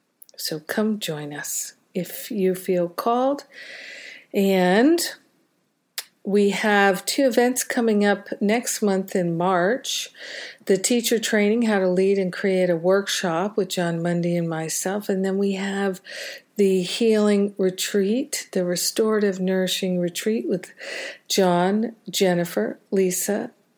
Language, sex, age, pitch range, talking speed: English, female, 50-69, 180-215 Hz, 125 wpm